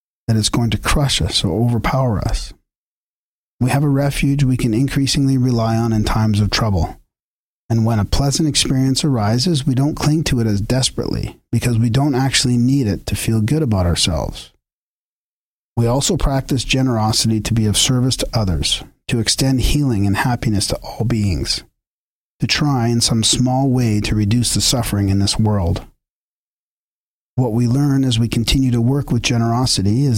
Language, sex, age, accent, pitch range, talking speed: English, male, 40-59, American, 105-130 Hz, 175 wpm